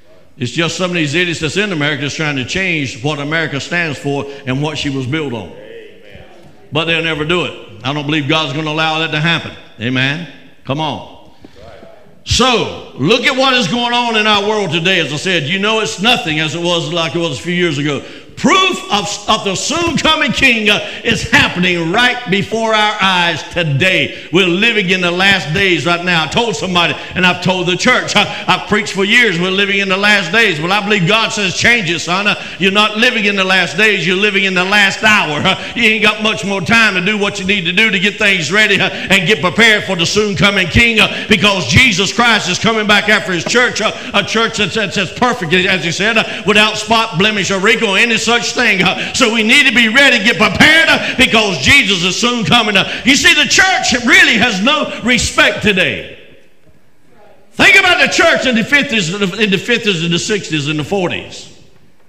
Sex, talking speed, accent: male, 220 wpm, American